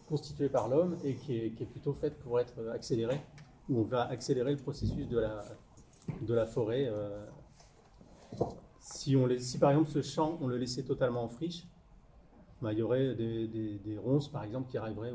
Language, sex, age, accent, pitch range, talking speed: French, male, 40-59, French, 105-130 Hz, 200 wpm